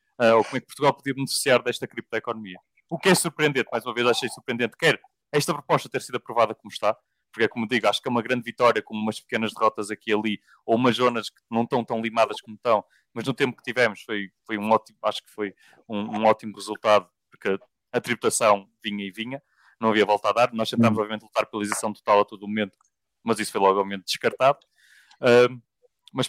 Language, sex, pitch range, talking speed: Portuguese, male, 110-140 Hz, 225 wpm